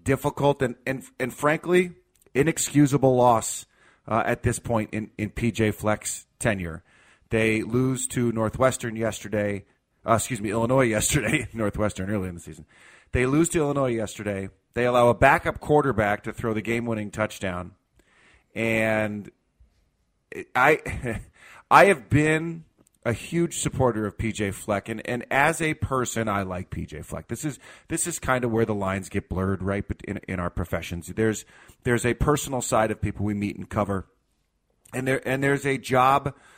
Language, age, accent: English, 30-49, American